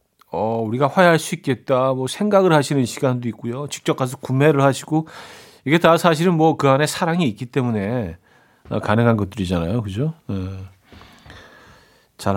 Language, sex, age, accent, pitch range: Korean, male, 40-59, native, 120-165 Hz